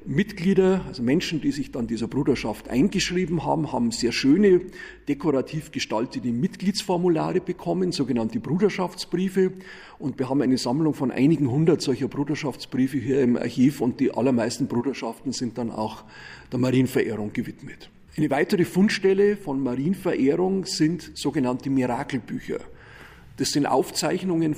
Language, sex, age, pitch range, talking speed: German, male, 40-59, 130-180 Hz, 130 wpm